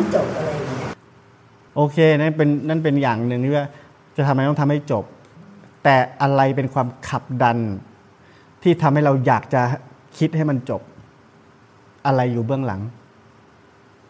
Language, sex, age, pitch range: Thai, male, 30-49, 115-140 Hz